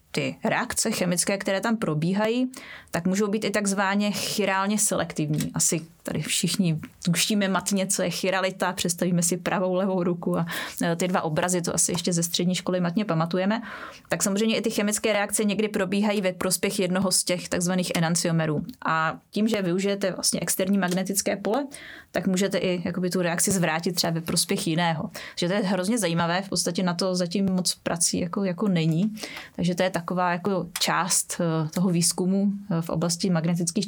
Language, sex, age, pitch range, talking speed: Czech, female, 20-39, 175-200 Hz, 175 wpm